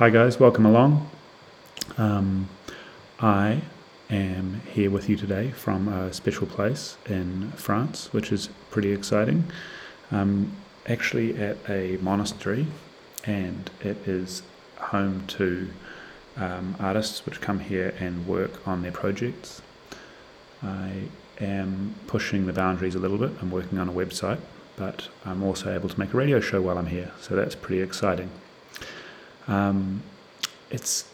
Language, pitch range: English, 95-105 Hz